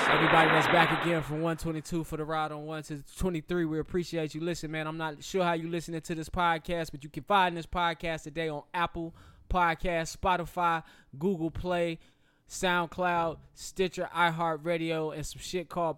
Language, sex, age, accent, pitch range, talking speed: English, male, 20-39, American, 150-170 Hz, 175 wpm